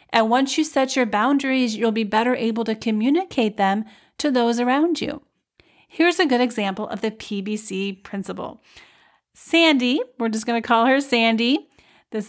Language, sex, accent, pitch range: English, female, American, 210-255 Hz